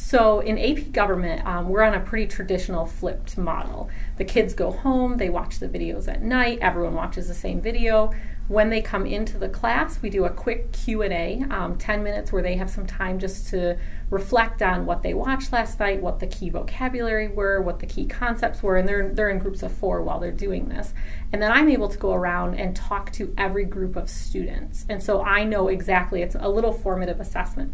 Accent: American